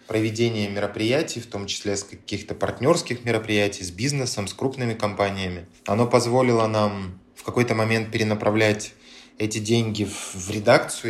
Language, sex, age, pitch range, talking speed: Russian, male, 20-39, 100-115 Hz, 140 wpm